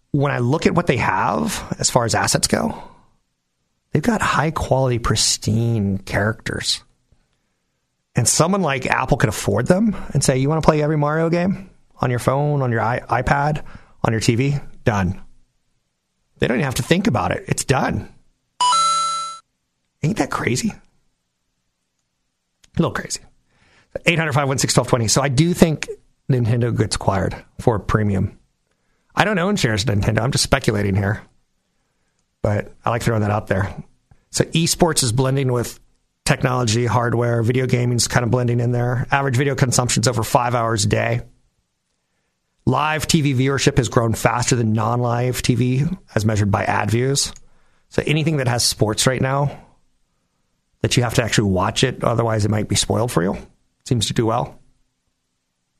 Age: 40-59